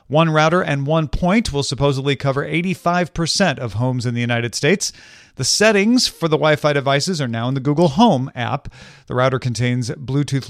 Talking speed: 185 wpm